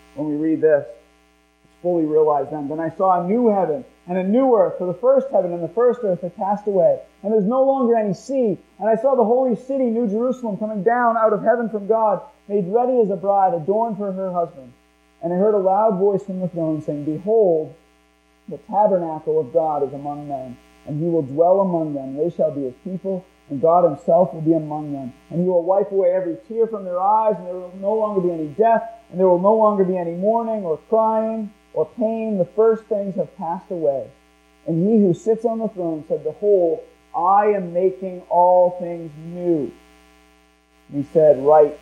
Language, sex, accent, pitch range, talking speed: English, male, American, 150-210 Hz, 215 wpm